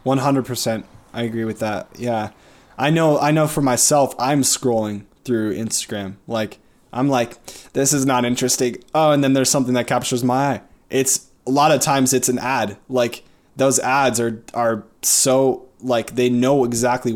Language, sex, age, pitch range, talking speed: English, male, 20-39, 110-130 Hz, 170 wpm